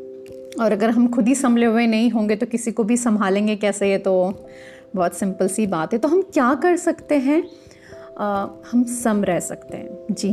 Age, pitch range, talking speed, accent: 30-49, 200-255 Hz, 200 wpm, native